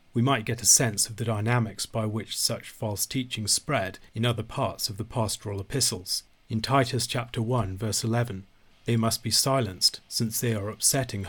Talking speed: 185 wpm